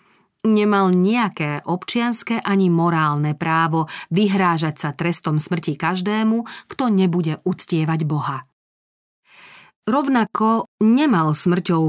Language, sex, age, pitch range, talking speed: Slovak, female, 40-59, 160-205 Hz, 90 wpm